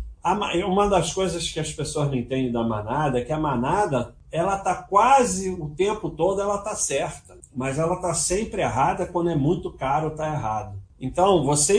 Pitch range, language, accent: 130-180 Hz, Portuguese, Brazilian